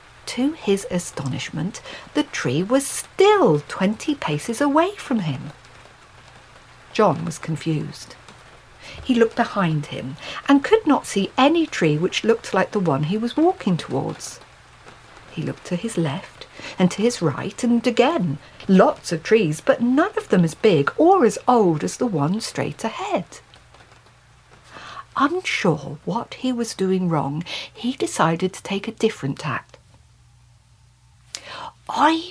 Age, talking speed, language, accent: 50-69, 140 wpm, English, British